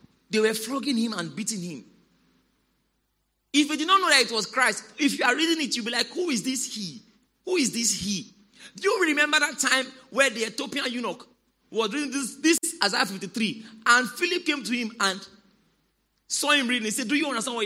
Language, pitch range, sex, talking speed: English, 215-295 Hz, male, 215 wpm